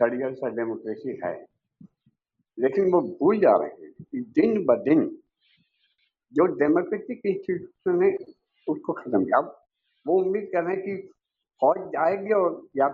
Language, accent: Hindi, native